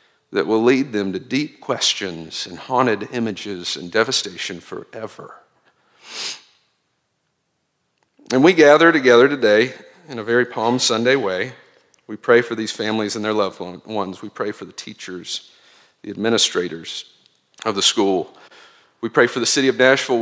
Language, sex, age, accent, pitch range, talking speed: English, male, 50-69, American, 115-160 Hz, 150 wpm